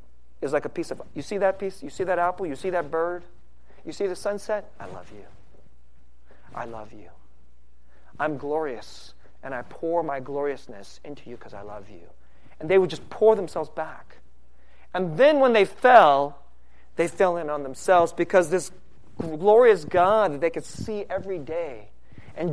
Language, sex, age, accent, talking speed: English, male, 40-59, American, 180 wpm